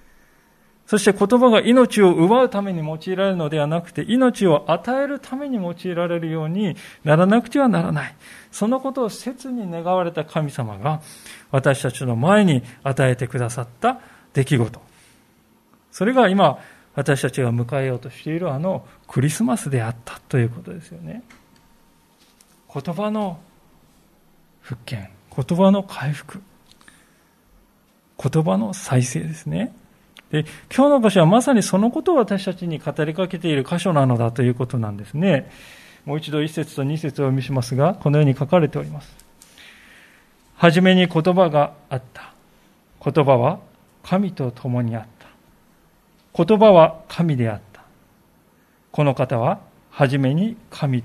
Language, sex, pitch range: Japanese, male, 135-190 Hz